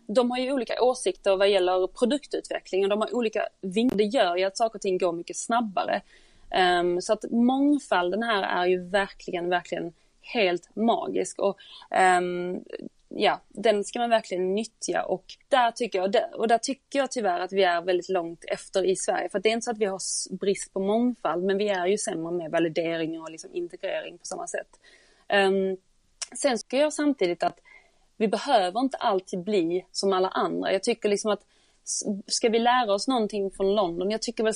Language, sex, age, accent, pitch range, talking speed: Swedish, female, 30-49, native, 185-230 Hz, 195 wpm